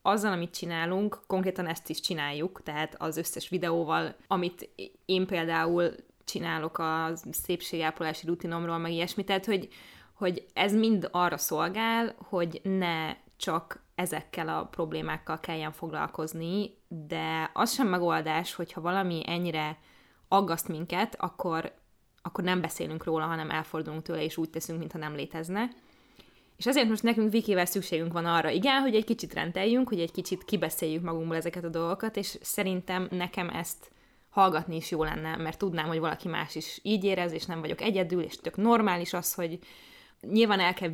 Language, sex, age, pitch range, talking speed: Hungarian, female, 20-39, 160-195 Hz, 155 wpm